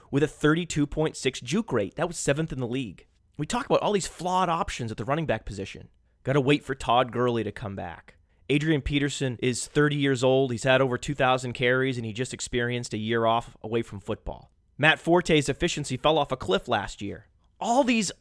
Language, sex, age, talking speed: English, male, 30-49, 210 wpm